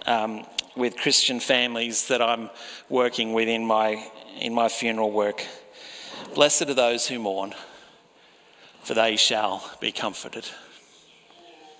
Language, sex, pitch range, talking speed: English, male, 125-165 Hz, 115 wpm